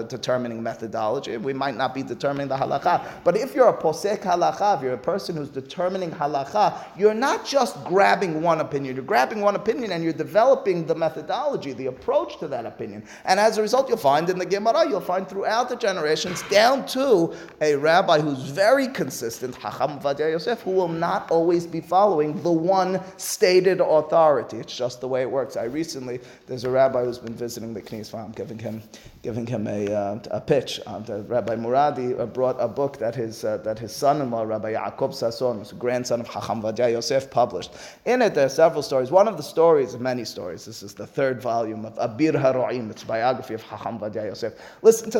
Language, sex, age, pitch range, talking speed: English, male, 30-49, 120-180 Hz, 200 wpm